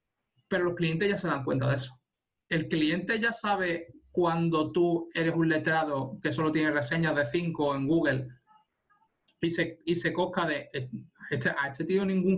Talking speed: 175 wpm